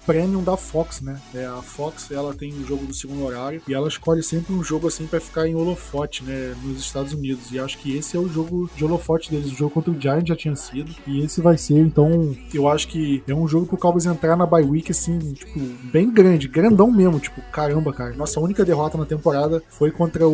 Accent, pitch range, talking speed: Brazilian, 145-175 Hz, 240 wpm